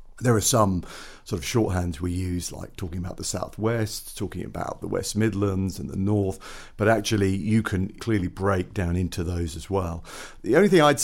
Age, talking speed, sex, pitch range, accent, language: 50-69, 195 wpm, male, 85-105 Hz, British, English